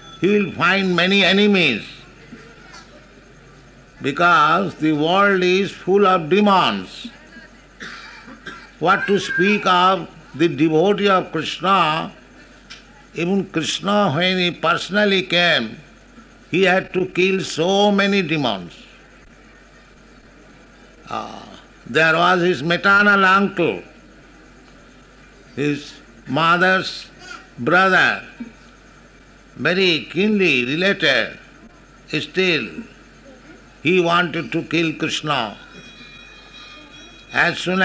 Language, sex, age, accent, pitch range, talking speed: English, male, 60-79, Indian, 160-195 Hz, 85 wpm